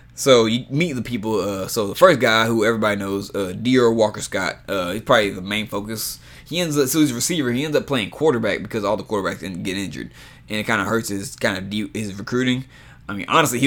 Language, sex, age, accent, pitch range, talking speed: English, male, 20-39, American, 105-125 Hz, 250 wpm